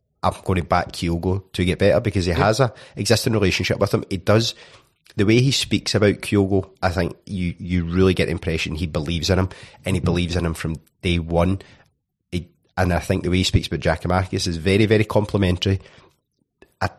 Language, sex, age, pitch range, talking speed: English, male, 30-49, 85-110 Hz, 210 wpm